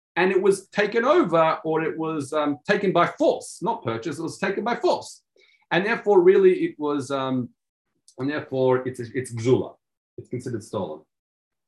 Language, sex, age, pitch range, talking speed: English, male, 40-59, 130-200 Hz, 175 wpm